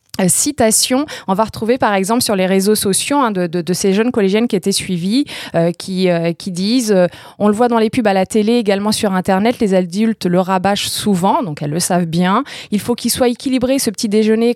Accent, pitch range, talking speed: French, 180-235 Hz, 230 wpm